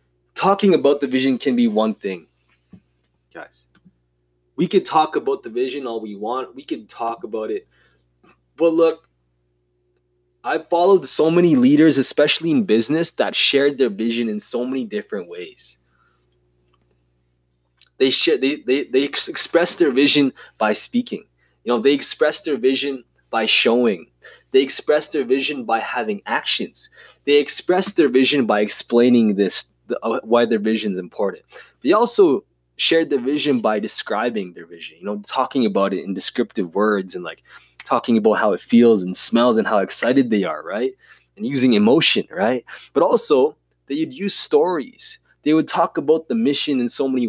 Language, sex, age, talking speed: English, male, 20-39, 165 wpm